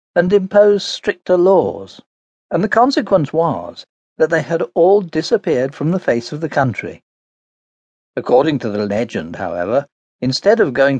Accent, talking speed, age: British, 145 wpm, 60-79